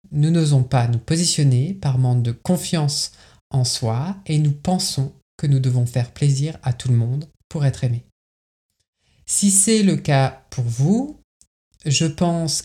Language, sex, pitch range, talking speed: French, male, 120-155 Hz, 160 wpm